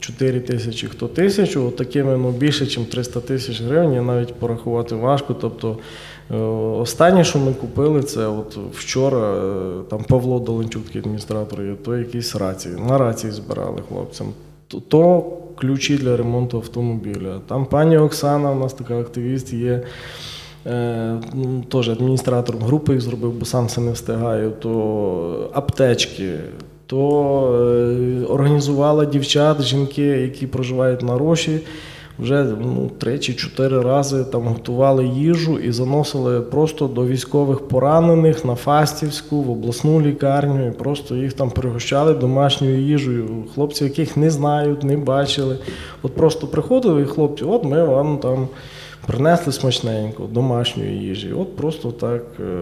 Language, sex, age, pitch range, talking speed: Ukrainian, male, 20-39, 120-145 Hz, 135 wpm